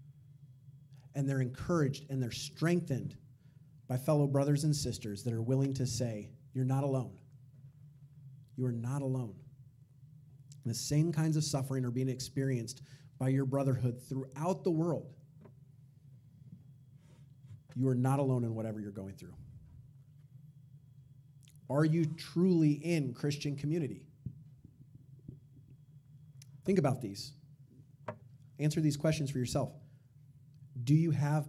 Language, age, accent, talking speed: English, 30-49, American, 120 wpm